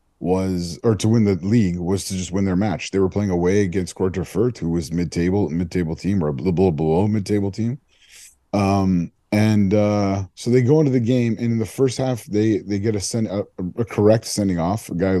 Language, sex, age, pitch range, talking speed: English, male, 30-49, 90-120 Hz, 230 wpm